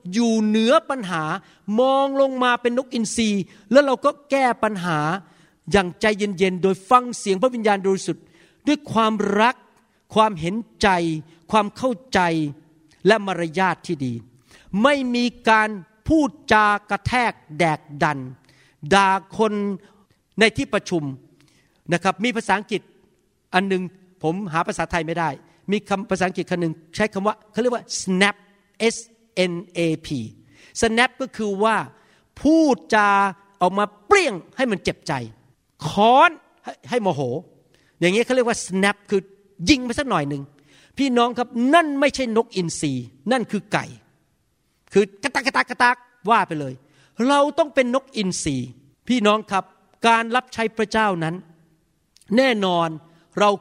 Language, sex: Thai, male